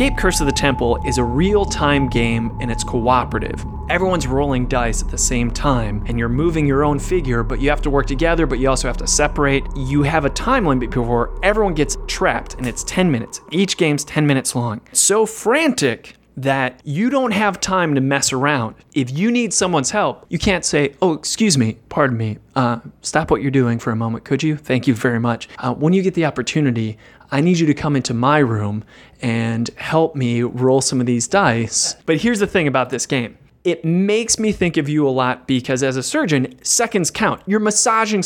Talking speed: 215 wpm